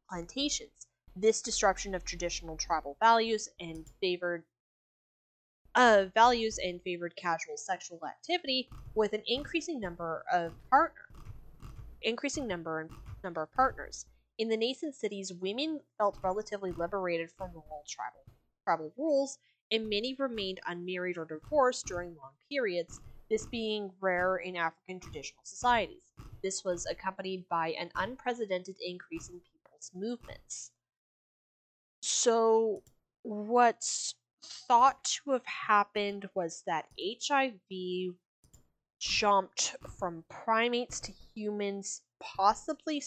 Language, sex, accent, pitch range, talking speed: English, female, American, 175-230 Hz, 115 wpm